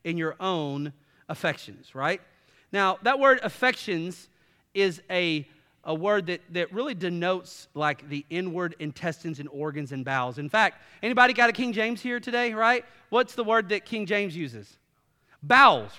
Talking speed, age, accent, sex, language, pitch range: 160 wpm, 40-59, American, male, English, 165-215 Hz